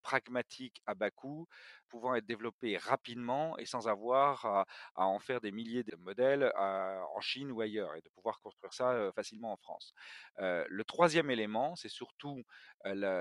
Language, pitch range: French, 105-135 Hz